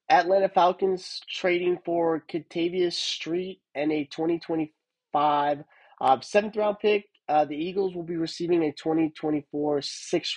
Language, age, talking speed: English, 20-39, 125 wpm